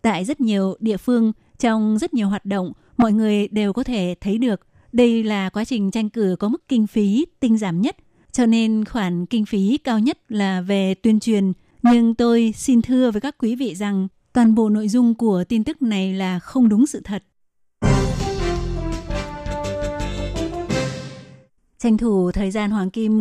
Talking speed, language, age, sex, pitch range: 180 wpm, Vietnamese, 20-39, female, 190-225 Hz